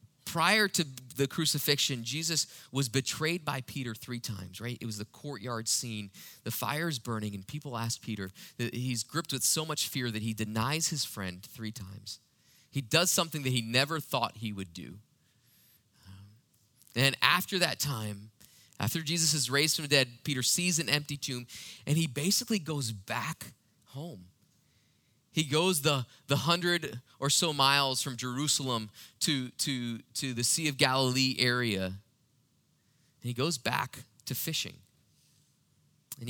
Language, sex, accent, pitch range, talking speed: English, male, American, 110-145 Hz, 160 wpm